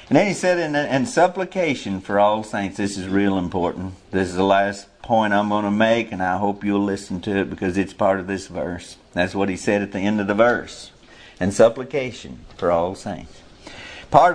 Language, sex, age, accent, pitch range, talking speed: English, male, 50-69, American, 100-135 Hz, 220 wpm